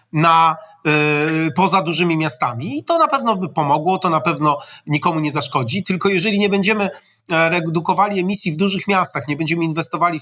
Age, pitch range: 40-59, 150-185 Hz